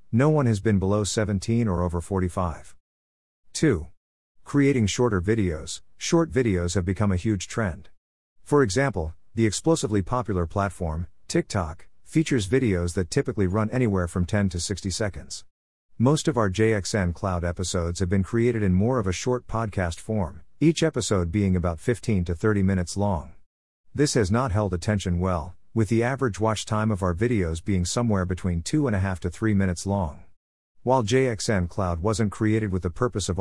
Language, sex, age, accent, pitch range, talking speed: English, male, 50-69, American, 90-115 Hz, 175 wpm